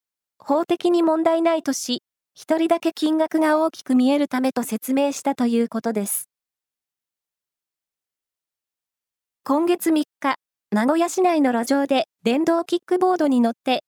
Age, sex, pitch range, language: 20-39, female, 245-325 Hz, Japanese